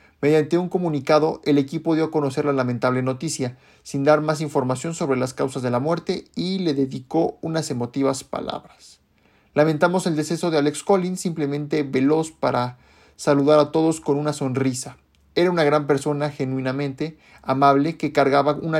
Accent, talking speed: Mexican, 165 wpm